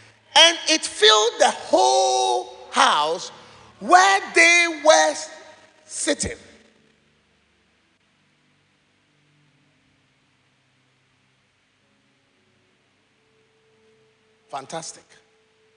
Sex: male